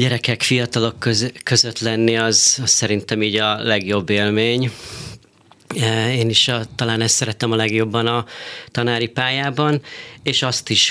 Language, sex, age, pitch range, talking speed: Hungarian, male, 30-49, 110-130 Hz, 130 wpm